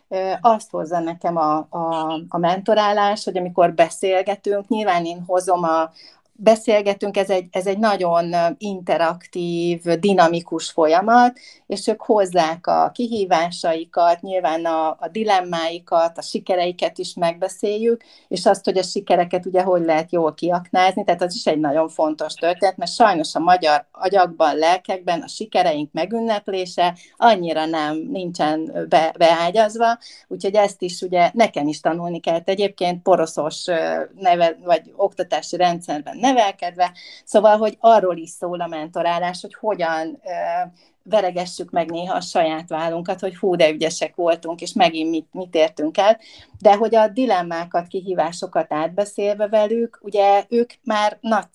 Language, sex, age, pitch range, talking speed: Hungarian, female, 40-59, 170-210 Hz, 140 wpm